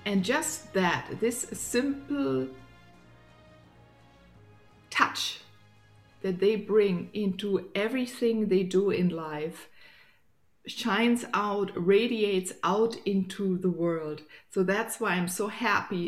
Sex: female